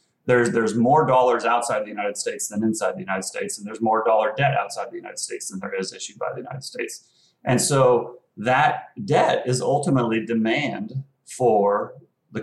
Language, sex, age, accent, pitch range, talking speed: English, male, 30-49, American, 110-140 Hz, 190 wpm